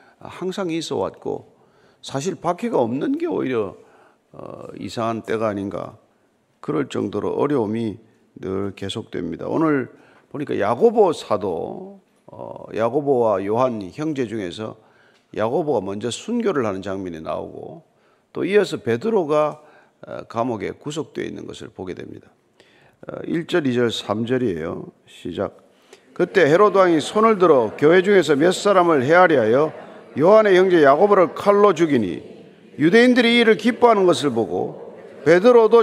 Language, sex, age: Korean, male, 40-59